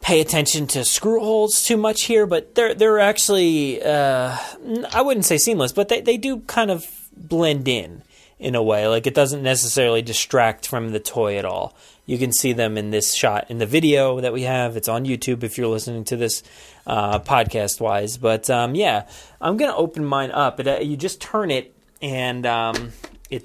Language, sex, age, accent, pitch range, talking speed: English, male, 30-49, American, 115-160 Hz, 200 wpm